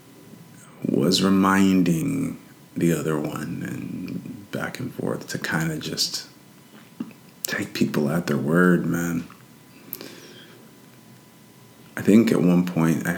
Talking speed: 115 wpm